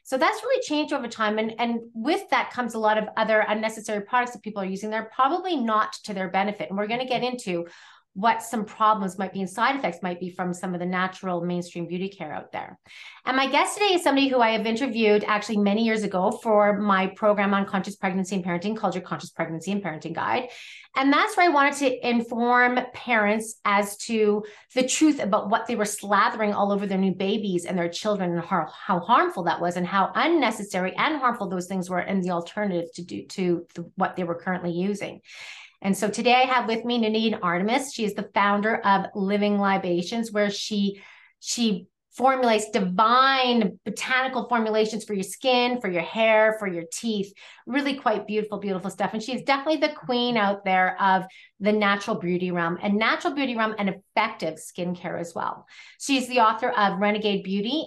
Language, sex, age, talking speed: English, female, 30-49, 200 wpm